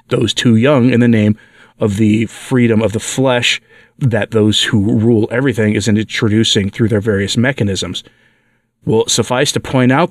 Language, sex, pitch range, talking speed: English, male, 110-145 Hz, 165 wpm